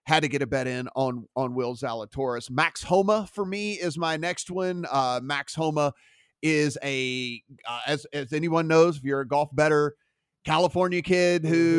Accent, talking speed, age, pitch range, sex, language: American, 185 wpm, 30-49, 140-165 Hz, male, English